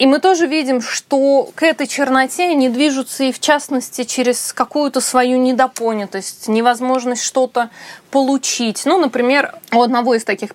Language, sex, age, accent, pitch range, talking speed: Russian, female, 20-39, native, 230-290 Hz, 150 wpm